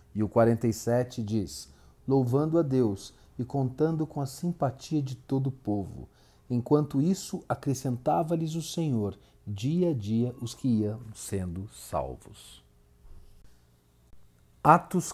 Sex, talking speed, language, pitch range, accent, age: male, 120 wpm, Portuguese, 105-150 Hz, Brazilian, 50-69